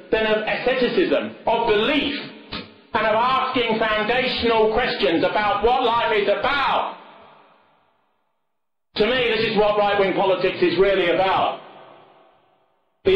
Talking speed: 120 wpm